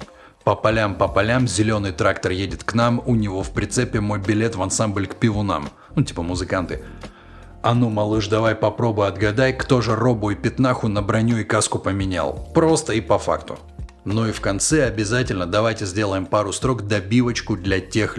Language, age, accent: Russian, 30-49, native